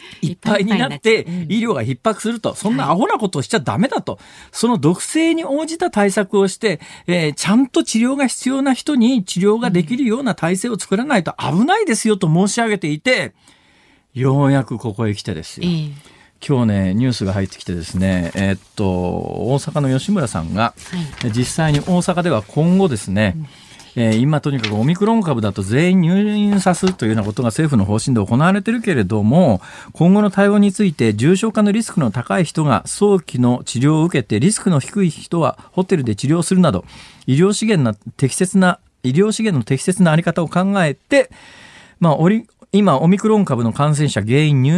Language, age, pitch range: Japanese, 40-59, 125-200 Hz